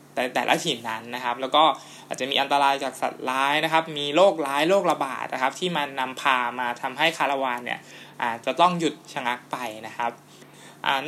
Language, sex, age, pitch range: Thai, male, 20-39, 130-160 Hz